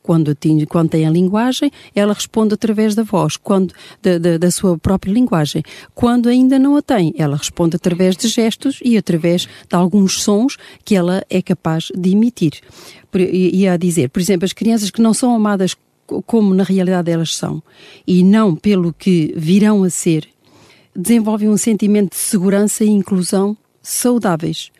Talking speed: 165 wpm